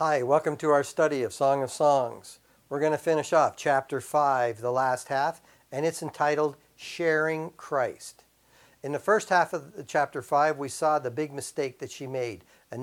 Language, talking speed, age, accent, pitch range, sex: English, 185 wpm, 60-79, American, 135-160 Hz, male